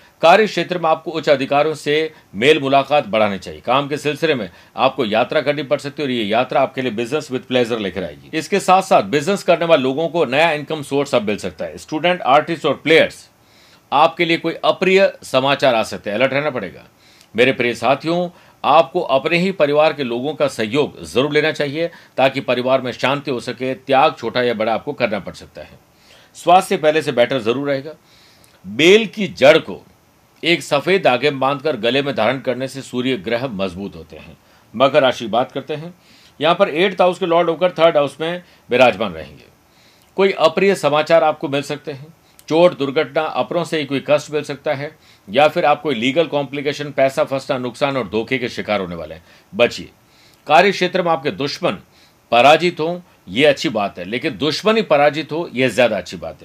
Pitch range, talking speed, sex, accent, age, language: 135-165 Hz, 195 wpm, male, native, 50-69, Hindi